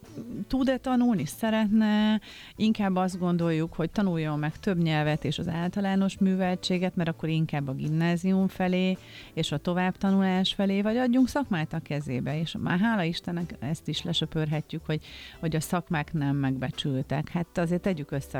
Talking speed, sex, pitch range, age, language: 155 wpm, female, 150-185 Hz, 40-59, Hungarian